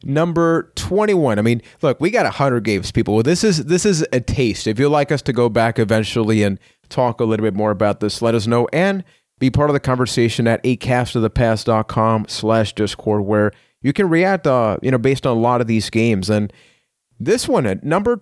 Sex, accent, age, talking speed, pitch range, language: male, American, 30-49, 215 wpm, 115-140 Hz, English